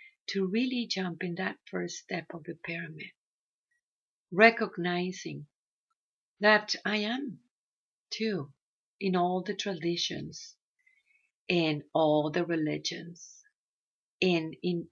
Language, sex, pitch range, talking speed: English, female, 175-220 Hz, 100 wpm